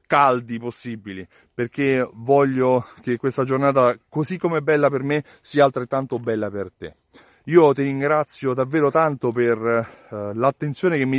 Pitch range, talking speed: 120-150 Hz, 150 wpm